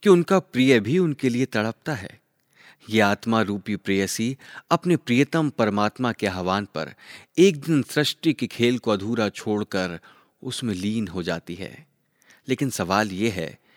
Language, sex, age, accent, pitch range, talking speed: Hindi, male, 30-49, native, 105-150 Hz, 155 wpm